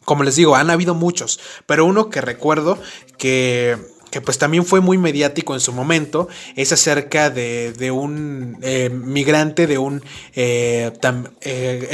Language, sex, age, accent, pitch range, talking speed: Spanish, male, 20-39, Mexican, 130-170 Hz, 160 wpm